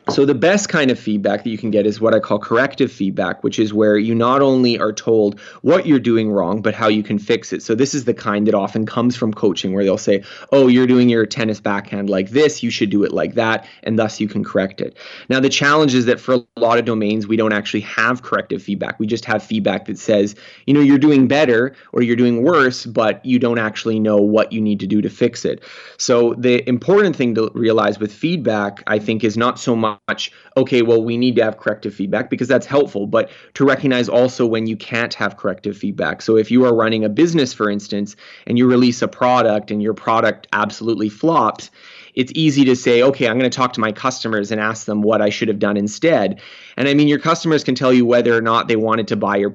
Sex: male